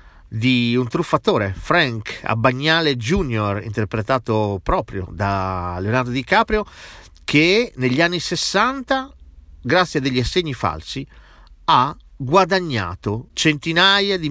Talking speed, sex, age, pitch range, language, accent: 100 wpm, male, 40-59, 105-165 Hz, Italian, native